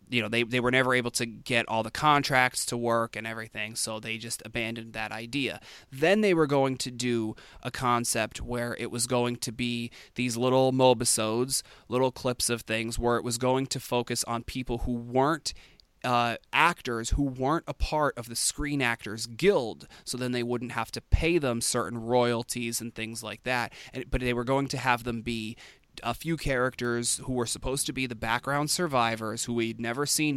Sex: male